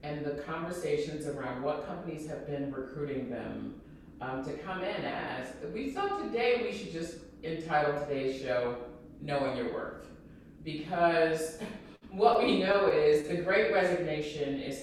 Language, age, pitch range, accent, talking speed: English, 40-59, 130-165 Hz, American, 145 wpm